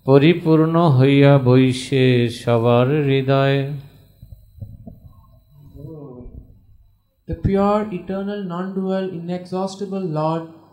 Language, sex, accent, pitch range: English, male, Indian, 150-185 Hz